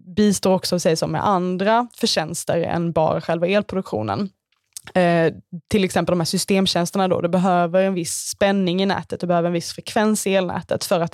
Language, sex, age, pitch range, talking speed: Swedish, female, 20-39, 170-200 Hz, 185 wpm